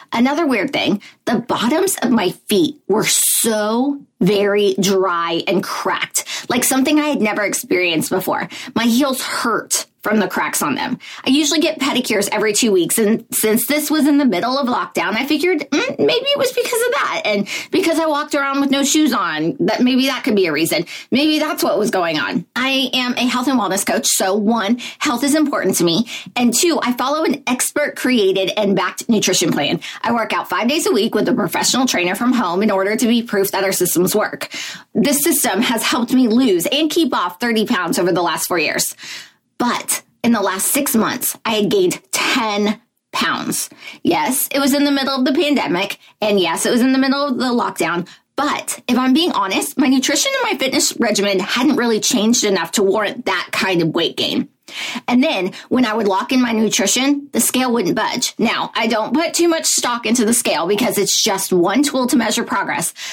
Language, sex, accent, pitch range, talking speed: English, female, American, 210-290 Hz, 210 wpm